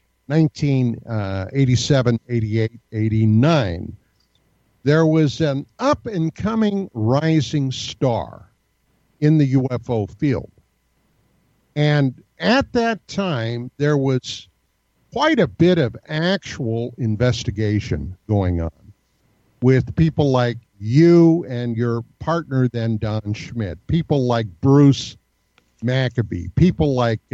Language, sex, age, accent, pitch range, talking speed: English, male, 50-69, American, 115-160 Hz, 100 wpm